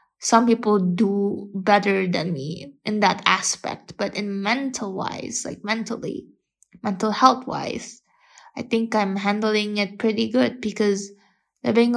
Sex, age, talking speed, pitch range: female, 20-39, 125 wpm, 200-240 Hz